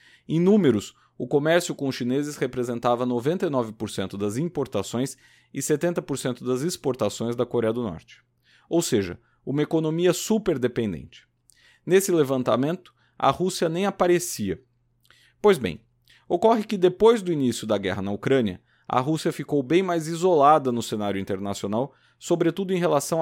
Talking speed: 135 wpm